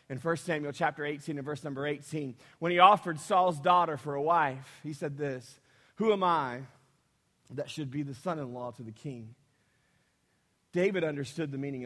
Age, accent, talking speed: 30-49, American, 175 wpm